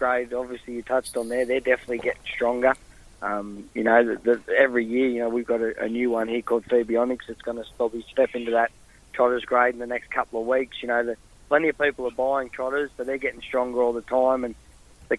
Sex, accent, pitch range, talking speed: male, Australian, 120-135 Hz, 245 wpm